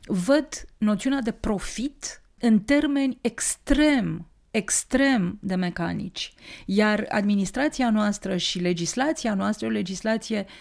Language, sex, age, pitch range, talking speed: English, female, 30-49, 185-240 Hz, 100 wpm